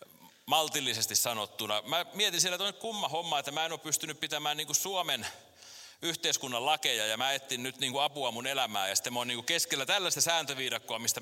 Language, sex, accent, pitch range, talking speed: Finnish, male, native, 125-165 Hz, 175 wpm